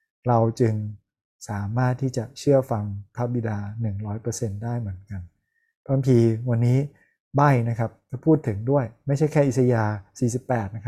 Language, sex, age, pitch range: Thai, male, 20-39, 110-135 Hz